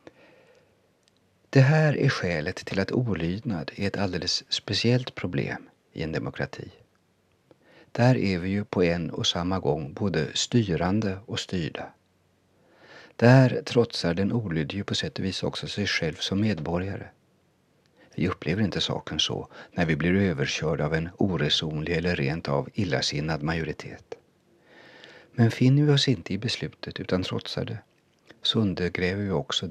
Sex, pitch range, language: male, 85-115 Hz, Swedish